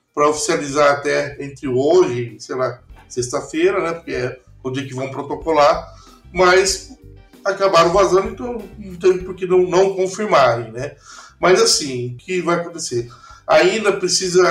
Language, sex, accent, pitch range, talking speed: Portuguese, male, Brazilian, 130-185 Hz, 150 wpm